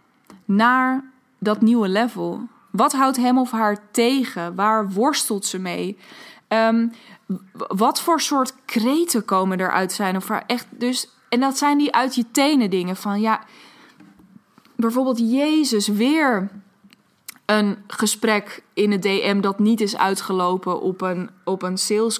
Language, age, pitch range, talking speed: Dutch, 20-39, 200-255 Hz, 150 wpm